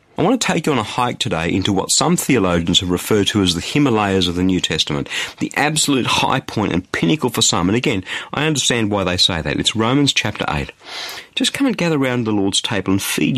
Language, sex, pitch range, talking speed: English, male, 95-140 Hz, 240 wpm